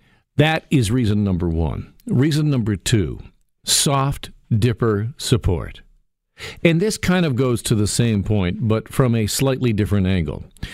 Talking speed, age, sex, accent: 145 wpm, 50-69, male, American